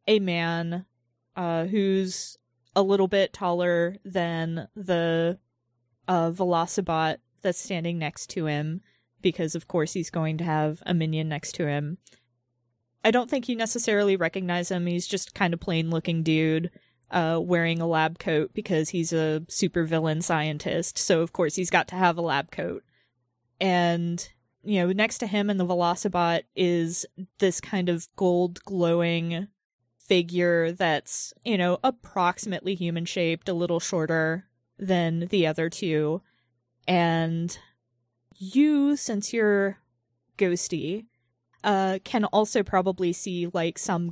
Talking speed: 145 wpm